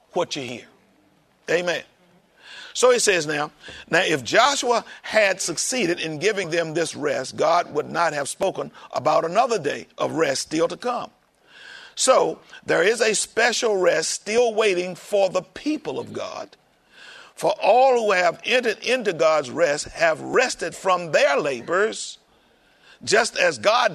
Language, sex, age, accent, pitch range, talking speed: English, male, 50-69, American, 175-250 Hz, 150 wpm